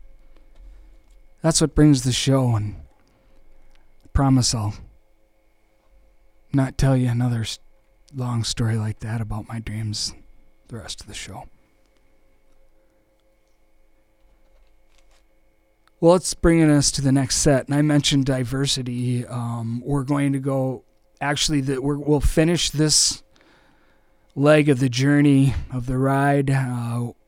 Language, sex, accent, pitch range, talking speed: English, male, American, 105-135 Hz, 120 wpm